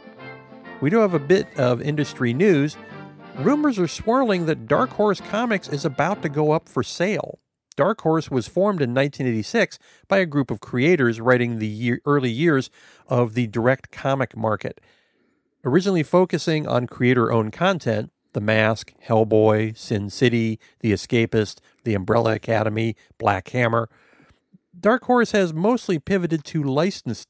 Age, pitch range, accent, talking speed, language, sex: 50-69, 115-175 Hz, American, 145 wpm, English, male